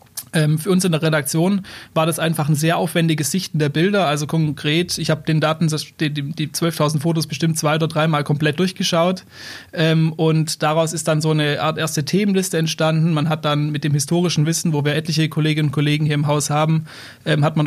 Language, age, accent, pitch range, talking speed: German, 30-49, German, 150-175 Hz, 195 wpm